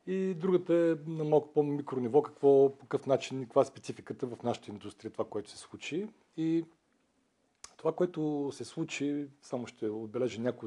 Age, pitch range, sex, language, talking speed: 40-59, 120-155 Hz, male, Bulgarian, 165 wpm